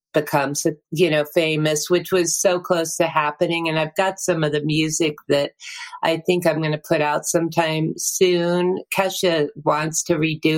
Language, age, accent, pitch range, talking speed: English, 50-69, American, 150-170 Hz, 175 wpm